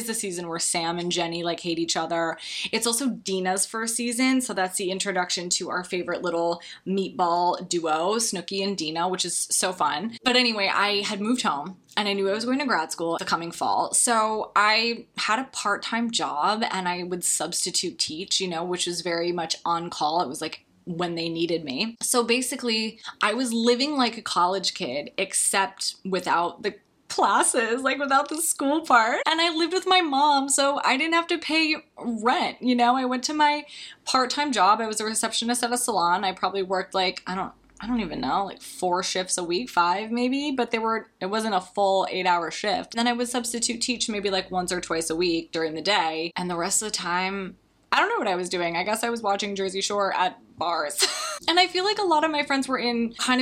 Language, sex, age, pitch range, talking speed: English, female, 20-39, 180-240 Hz, 220 wpm